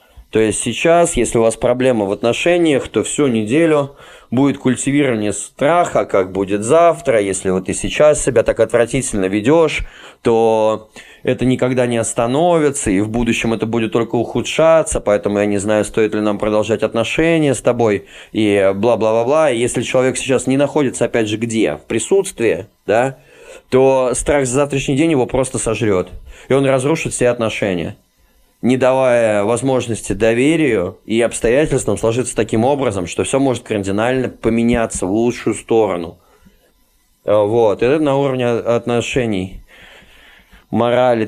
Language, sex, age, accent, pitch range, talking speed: Russian, male, 20-39, native, 105-130 Hz, 145 wpm